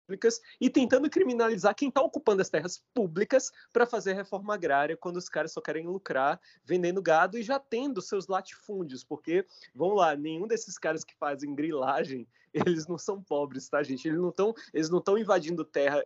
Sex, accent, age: male, Brazilian, 20-39